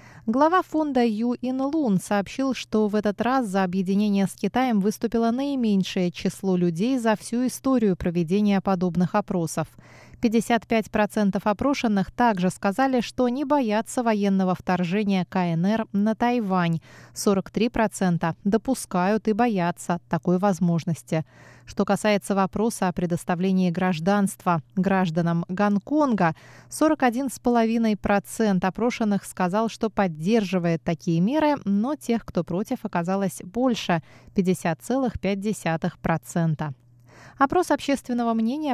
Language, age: Russian, 20-39